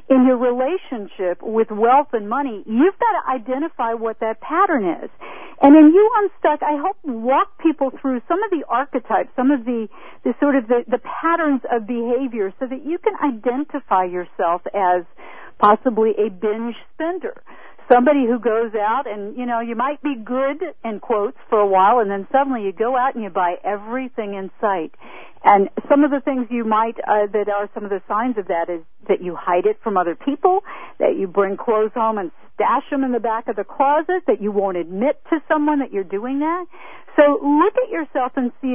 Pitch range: 210-290 Hz